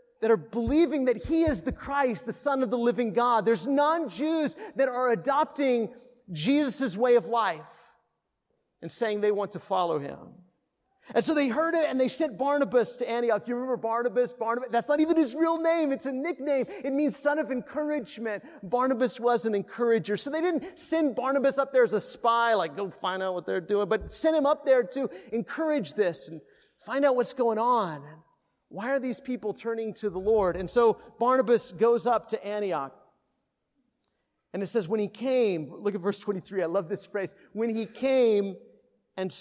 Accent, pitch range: American, 205-275 Hz